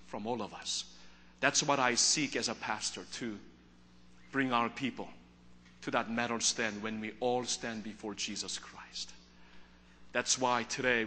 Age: 40-59